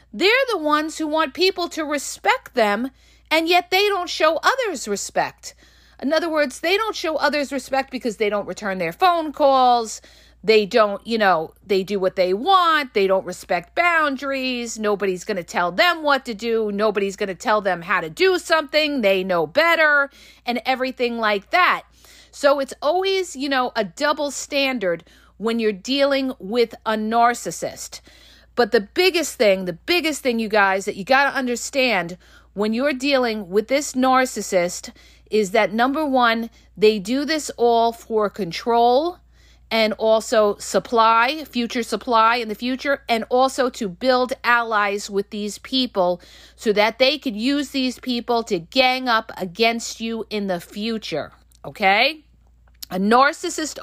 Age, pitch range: 50-69, 210-280 Hz